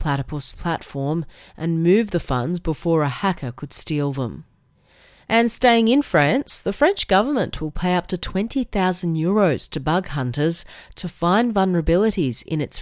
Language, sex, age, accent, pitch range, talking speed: English, female, 30-49, Australian, 150-195 Hz, 150 wpm